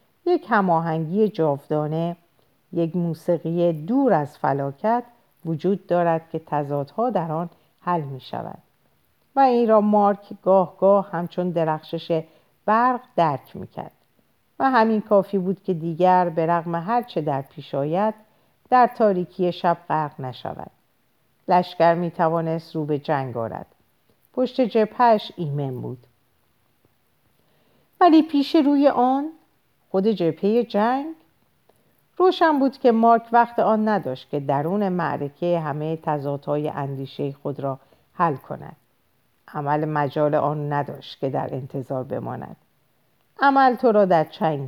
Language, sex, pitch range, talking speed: Persian, female, 150-215 Hz, 125 wpm